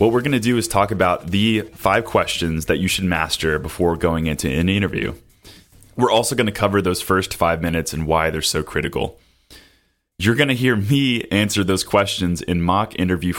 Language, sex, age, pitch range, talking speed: English, male, 30-49, 85-105 Hz, 200 wpm